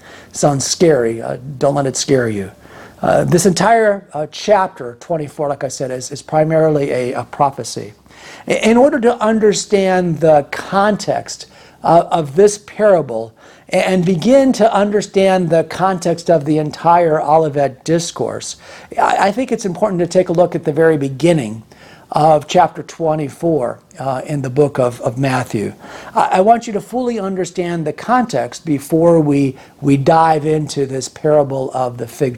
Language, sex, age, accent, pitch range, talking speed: English, male, 50-69, American, 145-200 Hz, 160 wpm